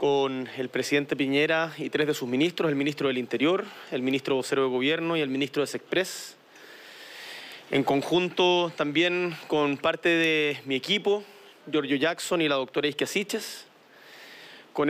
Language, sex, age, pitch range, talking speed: Spanish, male, 30-49, 150-190 Hz, 155 wpm